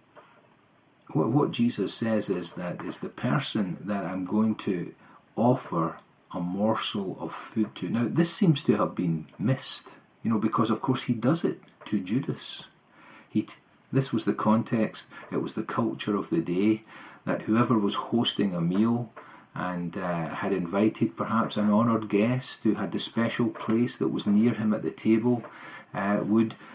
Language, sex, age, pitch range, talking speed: English, male, 40-59, 110-125 Hz, 170 wpm